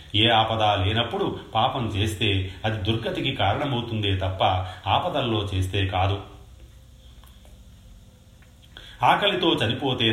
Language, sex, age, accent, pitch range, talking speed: Telugu, male, 30-49, native, 100-115 Hz, 85 wpm